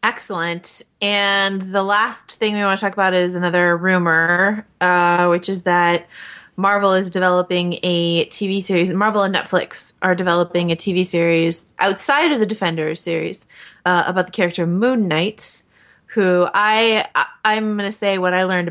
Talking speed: 165 wpm